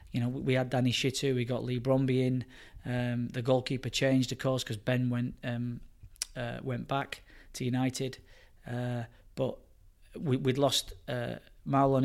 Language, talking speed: English, 165 wpm